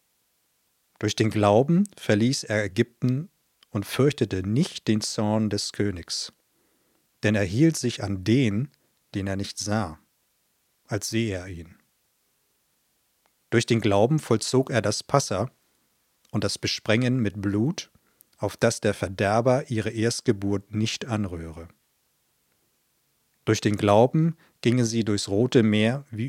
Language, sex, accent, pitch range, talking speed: German, male, German, 100-125 Hz, 130 wpm